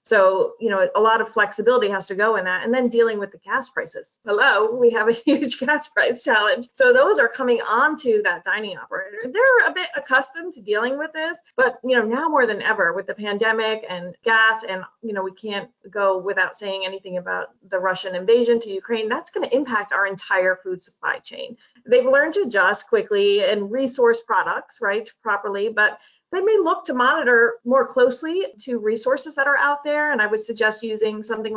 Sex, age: female, 30-49